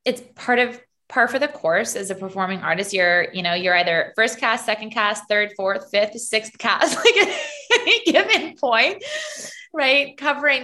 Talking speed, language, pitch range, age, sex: 175 wpm, English, 190-240 Hz, 20-39, female